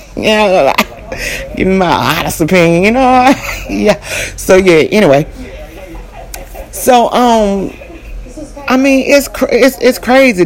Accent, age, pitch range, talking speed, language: American, 30-49, 170-255 Hz, 125 wpm, English